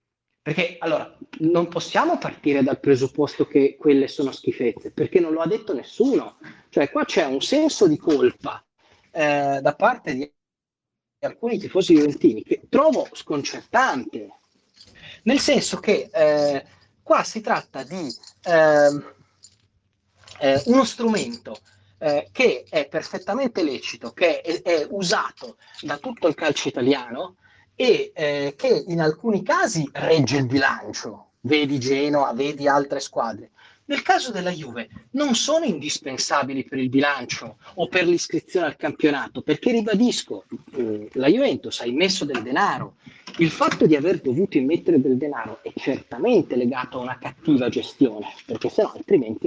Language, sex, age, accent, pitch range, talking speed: Italian, male, 40-59, native, 135-215 Hz, 140 wpm